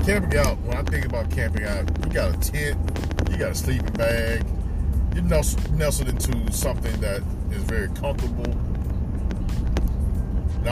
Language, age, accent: English, 40-59, American